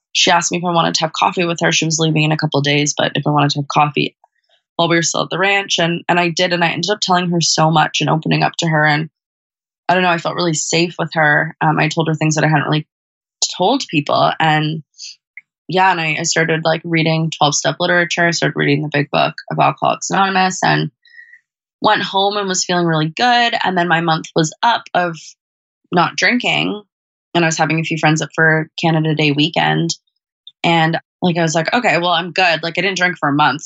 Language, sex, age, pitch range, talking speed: English, female, 20-39, 150-170 Hz, 240 wpm